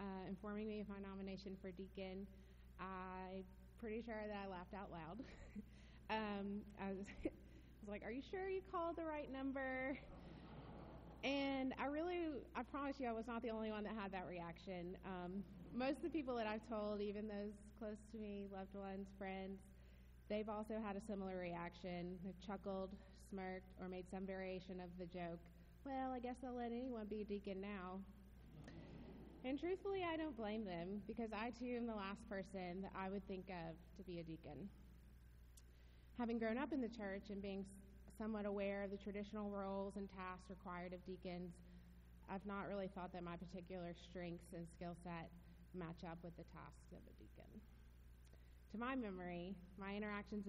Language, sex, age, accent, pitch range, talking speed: English, female, 20-39, American, 180-215 Hz, 180 wpm